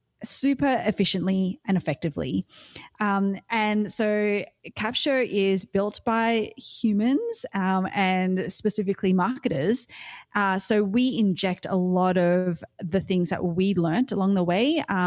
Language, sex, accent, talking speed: English, female, Australian, 125 wpm